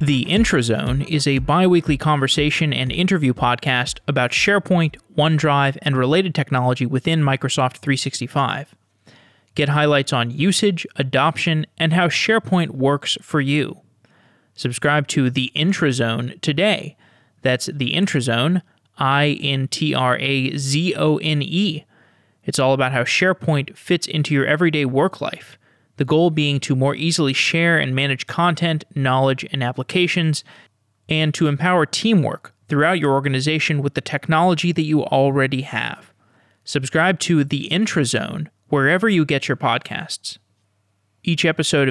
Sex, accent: male, American